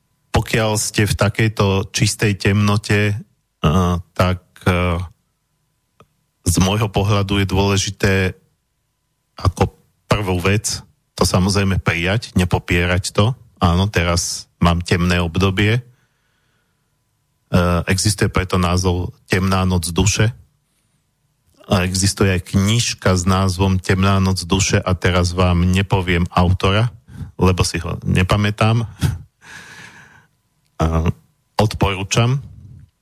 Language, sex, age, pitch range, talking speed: Slovak, male, 40-59, 90-105 Hz, 95 wpm